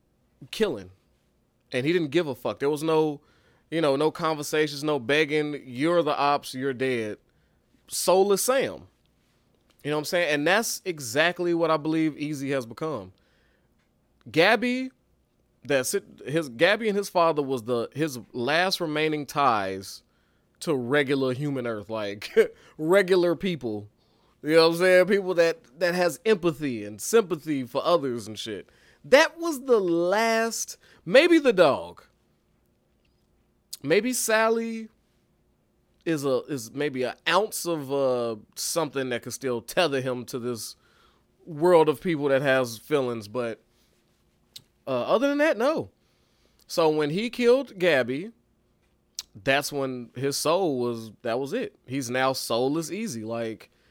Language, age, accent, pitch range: English, 20-39, American, 125-185 Hz